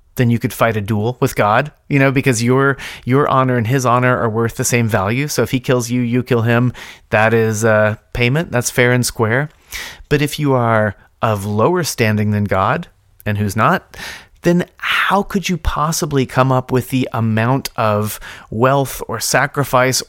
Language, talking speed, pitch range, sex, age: English, 190 wpm, 110-140 Hz, male, 30-49